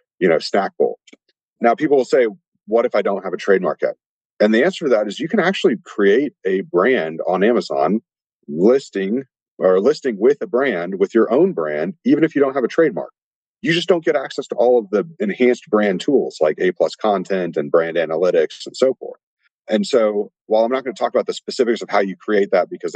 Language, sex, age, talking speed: English, male, 40-59, 225 wpm